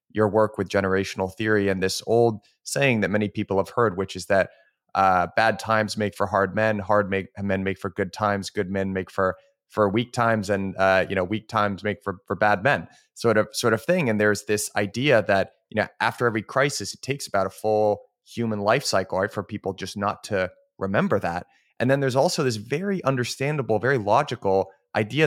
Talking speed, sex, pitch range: 215 wpm, male, 100-120 Hz